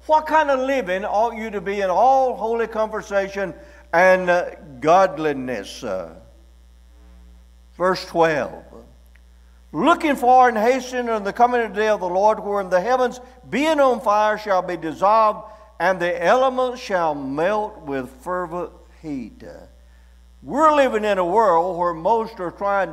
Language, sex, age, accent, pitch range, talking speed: English, male, 60-79, American, 165-220 Hz, 150 wpm